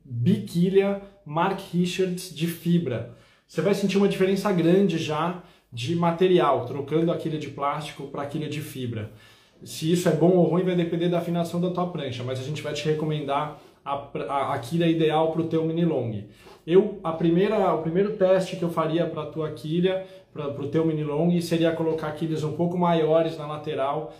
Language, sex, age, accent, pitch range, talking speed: Portuguese, male, 20-39, Brazilian, 145-175 Hz, 190 wpm